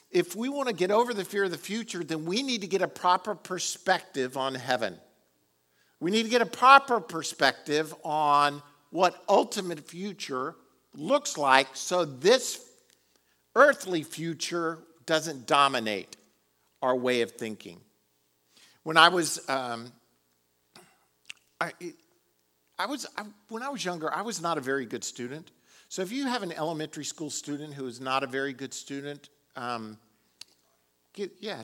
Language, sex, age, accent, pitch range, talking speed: English, male, 50-69, American, 130-185 Hz, 150 wpm